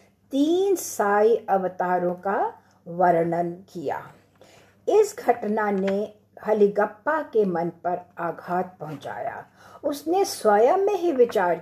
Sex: female